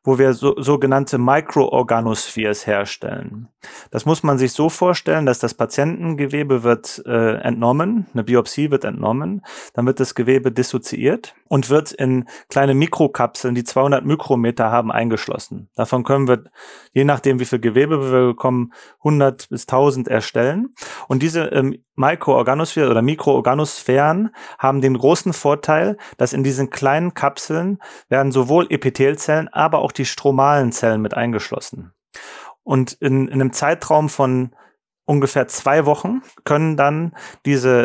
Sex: male